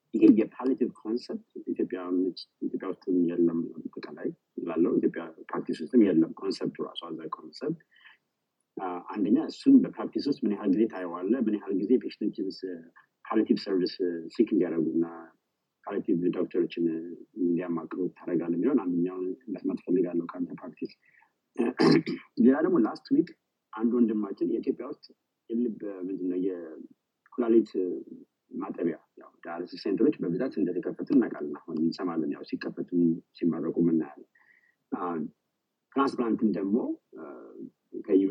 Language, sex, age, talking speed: English, male, 30-49, 85 wpm